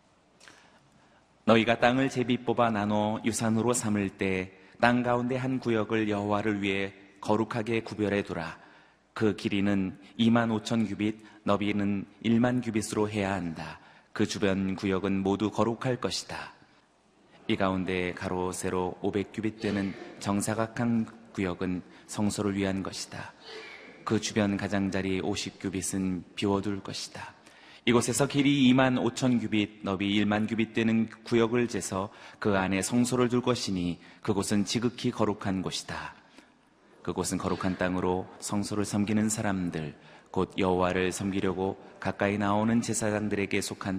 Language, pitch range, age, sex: Korean, 95-115 Hz, 30-49, male